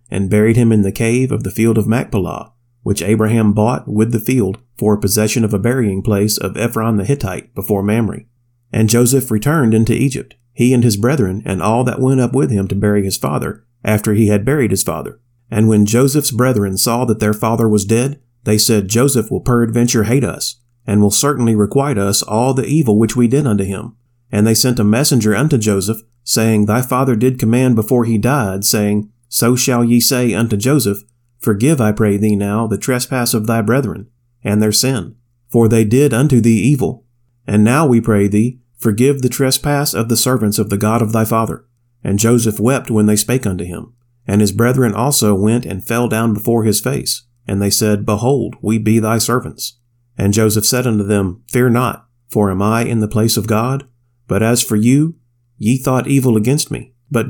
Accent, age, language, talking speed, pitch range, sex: American, 30-49, English, 205 wpm, 105-125 Hz, male